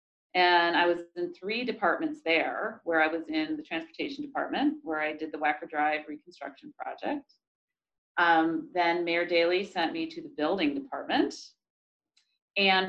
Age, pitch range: 40-59, 165-215 Hz